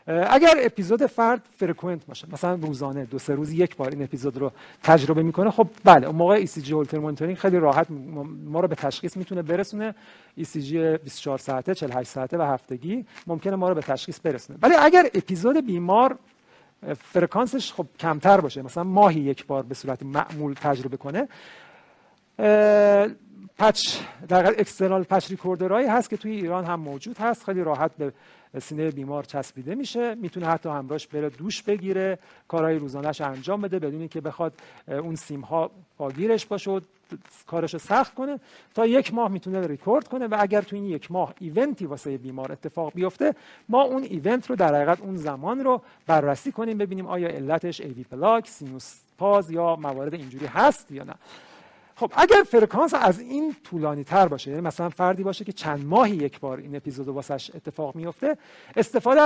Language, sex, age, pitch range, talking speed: Persian, male, 50-69, 150-205 Hz, 170 wpm